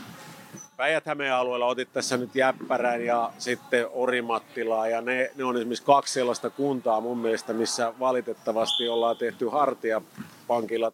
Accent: native